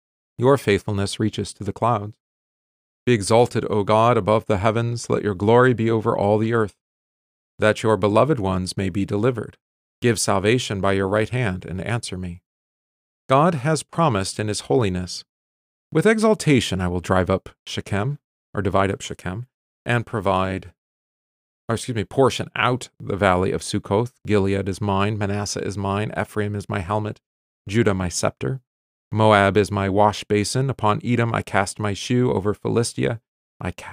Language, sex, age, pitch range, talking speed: English, male, 40-59, 95-120 Hz, 160 wpm